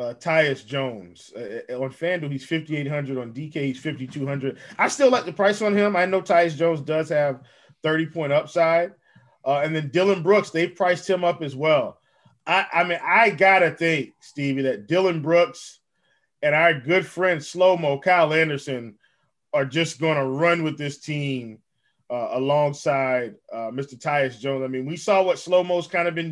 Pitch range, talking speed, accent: 150-190 Hz, 185 wpm, American